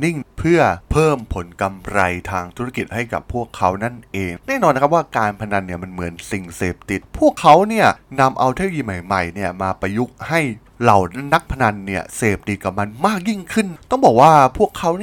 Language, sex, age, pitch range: Thai, male, 20-39, 100-145 Hz